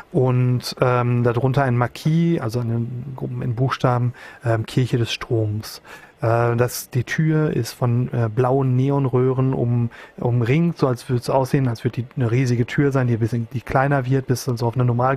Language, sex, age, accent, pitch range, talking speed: German, male, 30-49, German, 120-140 Hz, 180 wpm